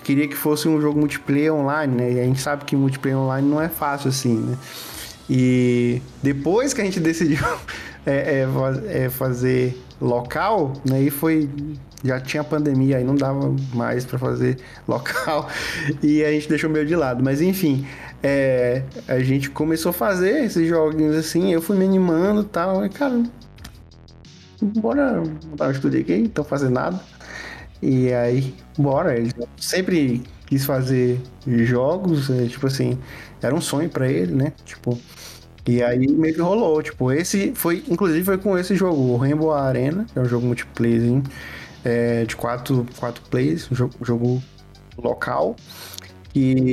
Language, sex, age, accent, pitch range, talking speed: Portuguese, male, 20-39, Brazilian, 125-155 Hz, 160 wpm